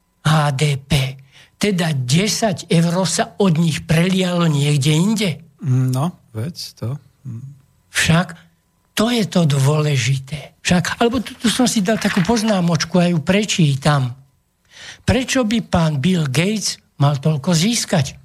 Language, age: Slovak, 60-79